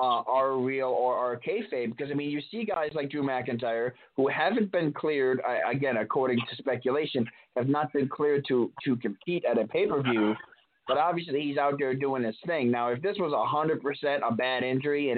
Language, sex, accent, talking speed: English, male, American, 220 wpm